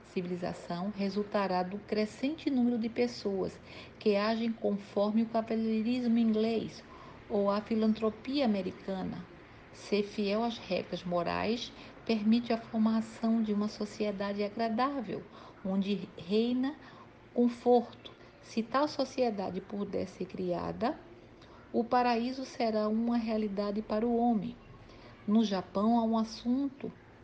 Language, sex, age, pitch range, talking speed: Portuguese, female, 50-69, 200-230 Hz, 110 wpm